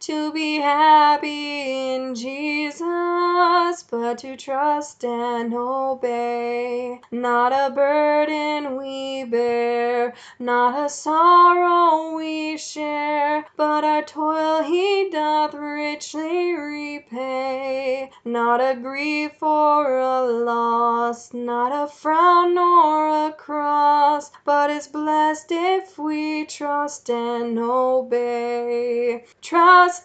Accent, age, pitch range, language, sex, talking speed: American, 10-29, 265-315 Hz, English, female, 95 wpm